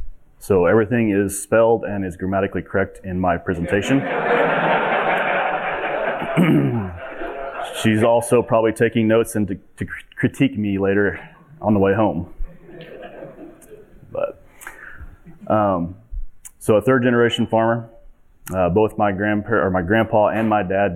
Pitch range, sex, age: 95-110 Hz, male, 30-49